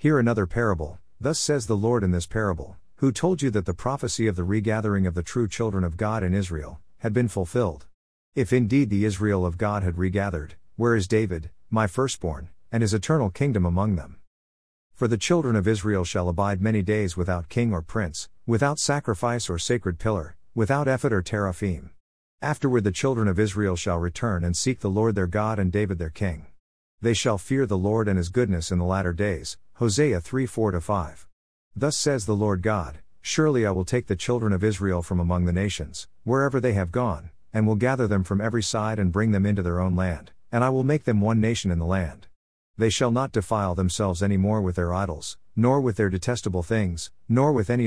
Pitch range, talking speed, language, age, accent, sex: 90-115 Hz, 210 wpm, English, 50-69, American, male